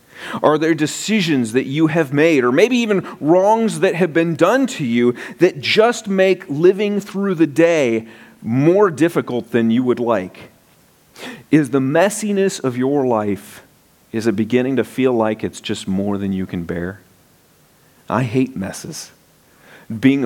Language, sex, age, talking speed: English, male, 40-59, 155 wpm